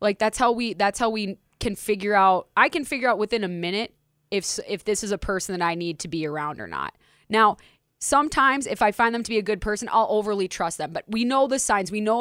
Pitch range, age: 185-225 Hz, 20-39